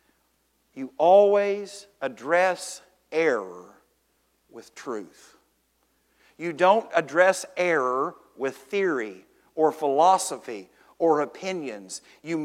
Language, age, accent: English, 50-69, American